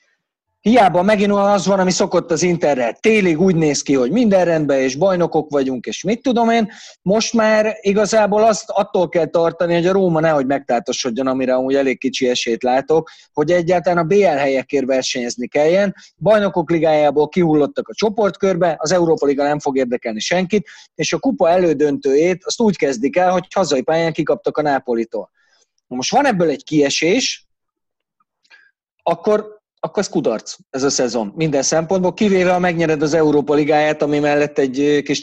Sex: male